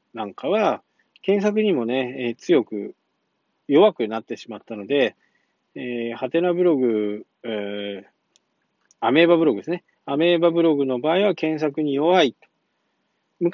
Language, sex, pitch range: Japanese, male, 115-155 Hz